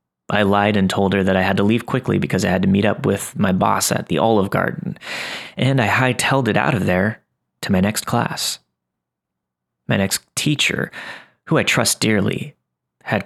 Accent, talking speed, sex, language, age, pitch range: American, 195 wpm, male, English, 30-49, 90-120 Hz